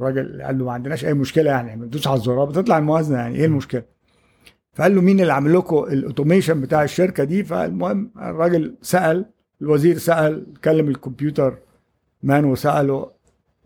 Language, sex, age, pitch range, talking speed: Arabic, male, 50-69, 130-165 Hz, 150 wpm